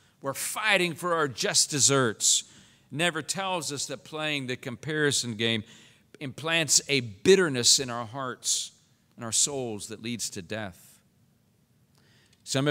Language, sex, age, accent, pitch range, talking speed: English, male, 50-69, American, 130-185 Hz, 130 wpm